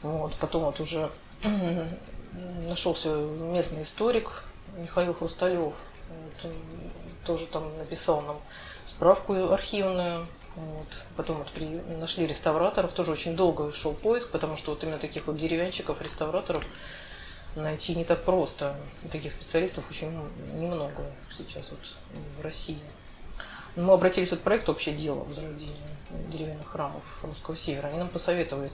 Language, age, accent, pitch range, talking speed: Russian, 30-49, native, 150-175 Hz, 135 wpm